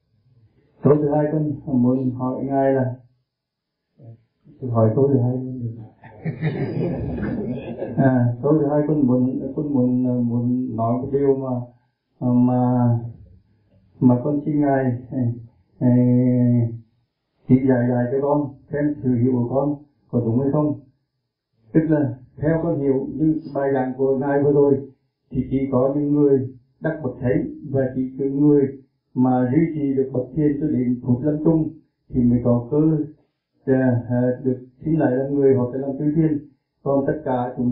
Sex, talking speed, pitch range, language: male, 155 wpm, 125-145 Hz, Vietnamese